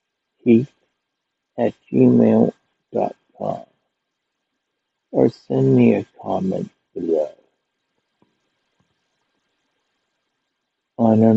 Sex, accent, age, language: male, American, 60-79, English